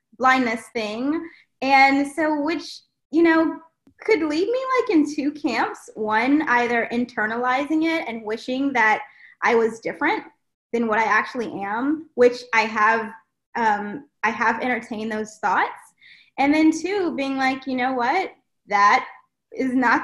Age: 20-39